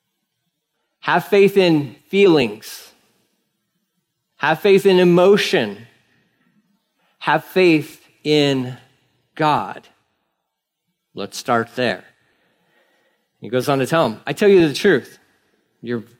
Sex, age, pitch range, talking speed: male, 40-59, 130-185 Hz, 100 wpm